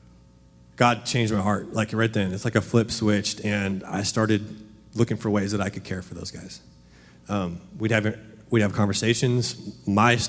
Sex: male